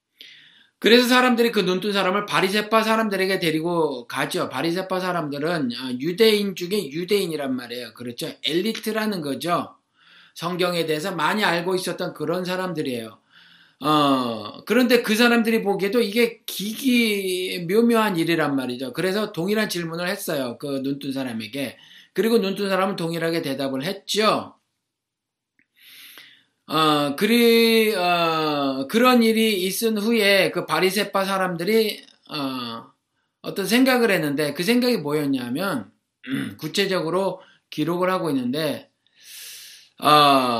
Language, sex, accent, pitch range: Korean, male, native, 155-225 Hz